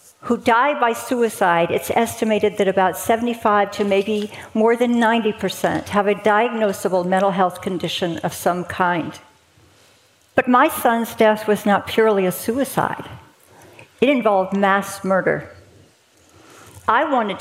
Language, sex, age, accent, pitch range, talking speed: English, female, 50-69, American, 190-230 Hz, 135 wpm